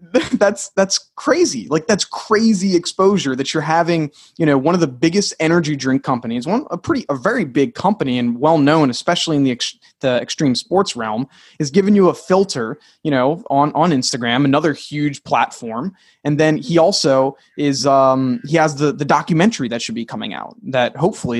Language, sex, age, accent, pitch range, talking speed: English, male, 20-39, American, 125-165 Hz, 190 wpm